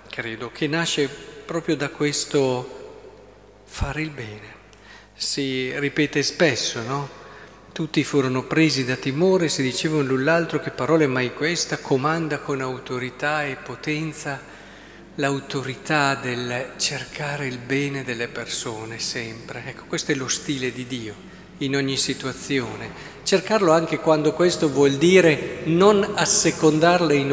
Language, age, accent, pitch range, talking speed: Italian, 50-69, native, 130-165 Hz, 130 wpm